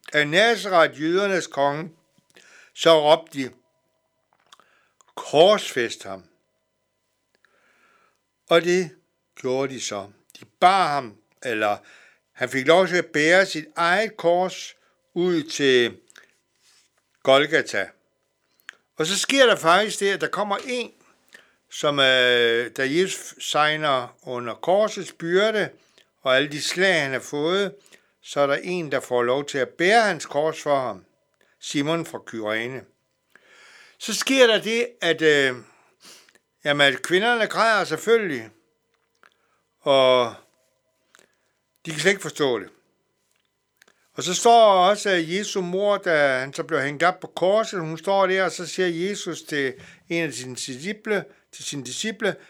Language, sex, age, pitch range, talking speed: Danish, male, 60-79, 135-190 Hz, 135 wpm